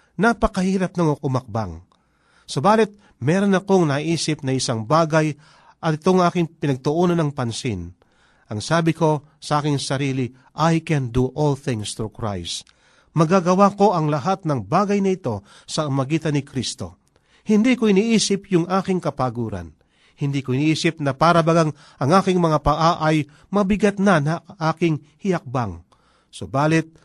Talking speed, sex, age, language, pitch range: 140 wpm, male, 40-59, Filipino, 130-185 Hz